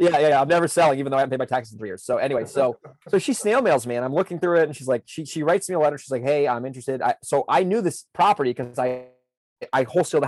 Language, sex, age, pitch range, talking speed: English, male, 30-49, 125-160 Hz, 315 wpm